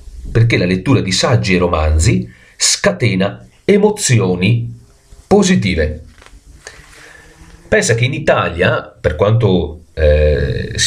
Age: 40-59